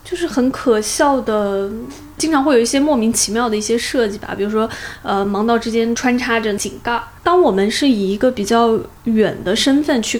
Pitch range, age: 215-275 Hz, 20-39